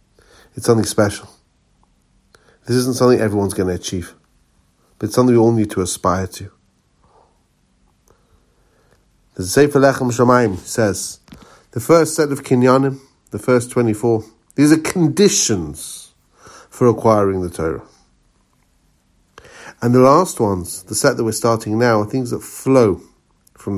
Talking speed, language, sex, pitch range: 135 wpm, English, male, 95-130 Hz